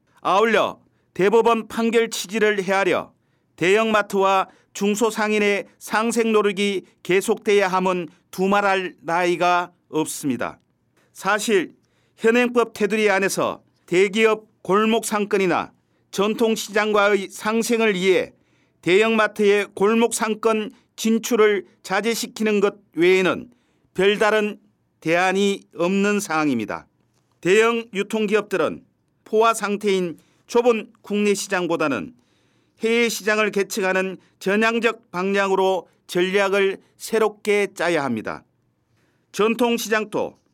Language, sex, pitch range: Korean, male, 190-220 Hz